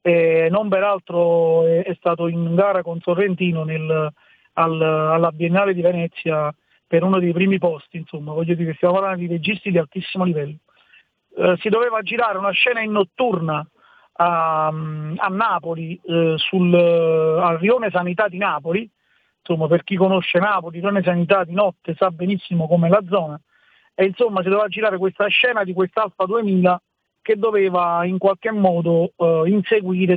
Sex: male